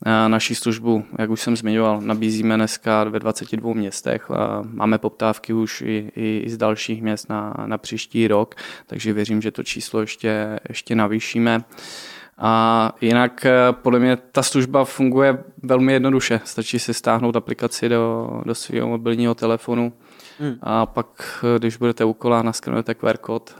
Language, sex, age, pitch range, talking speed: Czech, male, 20-39, 110-115 Hz, 150 wpm